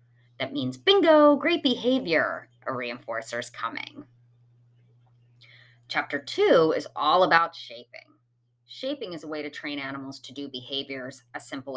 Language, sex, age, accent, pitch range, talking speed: English, female, 30-49, American, 120-185 Hz, 135 wpm